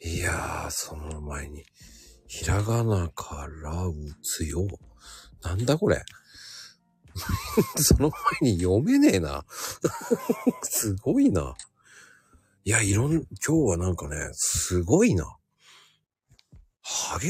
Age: 50-69